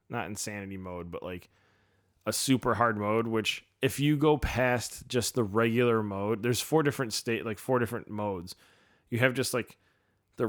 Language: English